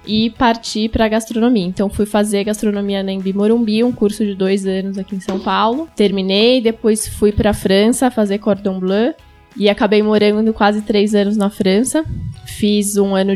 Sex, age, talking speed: female, 10-29, 175 wpm